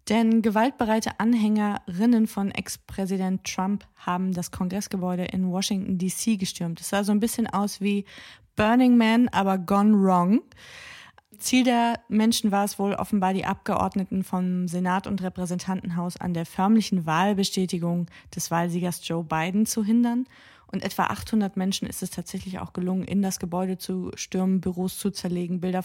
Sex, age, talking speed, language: female, 20-39, 155 wpm, German